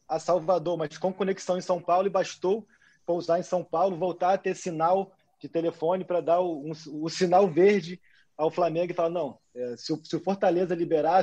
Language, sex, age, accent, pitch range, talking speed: Portuguese, male, 20-39, Brazilian, 155-185 Hz, 205 wpm